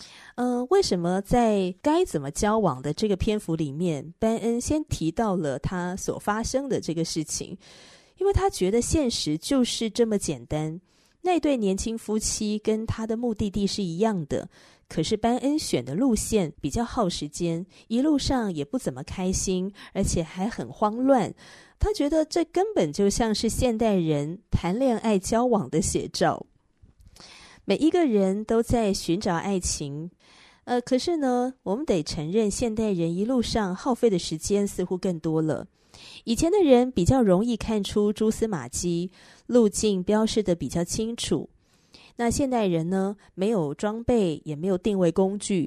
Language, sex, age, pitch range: Chinese, female, 30-49, 175-235 Hz